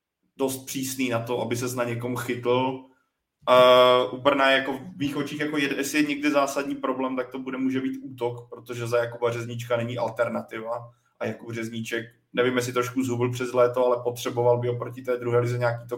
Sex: male